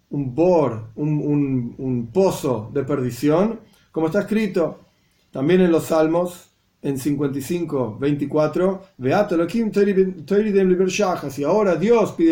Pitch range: 135-185 Hz